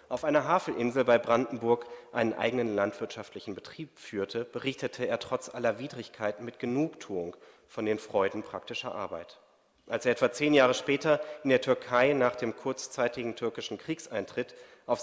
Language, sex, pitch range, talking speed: German, male, 115-155 Hz, 150 wpm